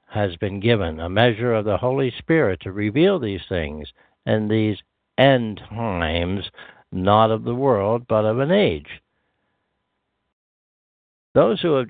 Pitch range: 90-125 Hz